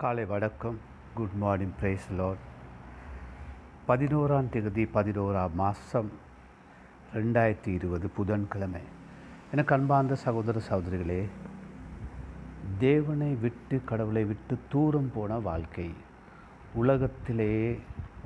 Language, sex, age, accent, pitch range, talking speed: Tamil, male, 60-79, native, 95-125 Hz, 80 wpm